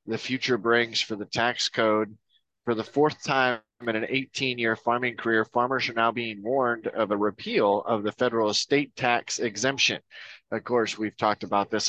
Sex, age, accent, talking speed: male, 20-39, American, 185 wpm